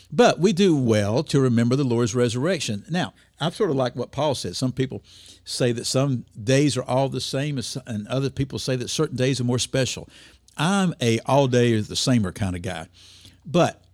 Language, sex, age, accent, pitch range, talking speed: English, male, 50-69, American, 100-130 Hz, 190 wpm